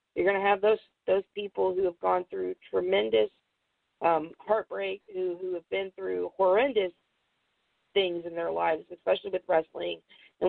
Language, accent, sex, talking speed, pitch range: English, American, female, 160 wpm, 175-205 Hz